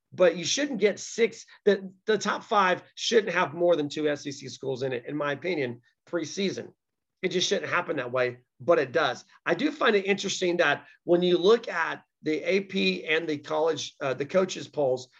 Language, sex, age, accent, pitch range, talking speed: English, male, 40-59, American, 160-215 Hz, 195 wpm